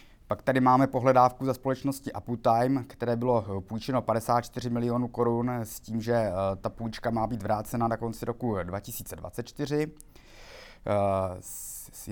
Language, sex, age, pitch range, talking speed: Czech, male, 20-39, 105-120 Hz, 130 wpm